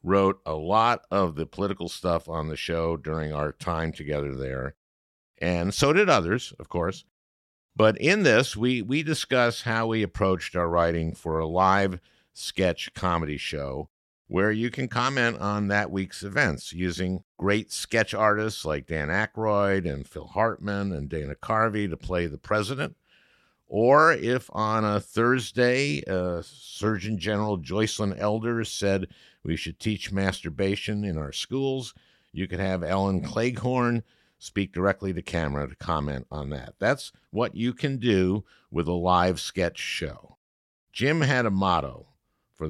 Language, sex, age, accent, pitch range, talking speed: English, male, 50-69, American, 80-110 Hz, 155 wpm